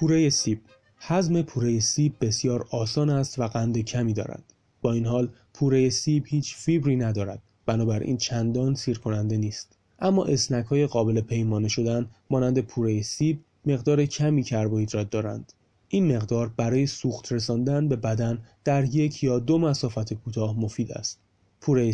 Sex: male